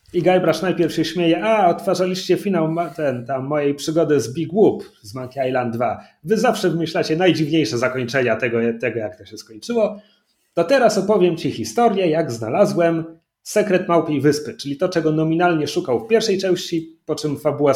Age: 30-49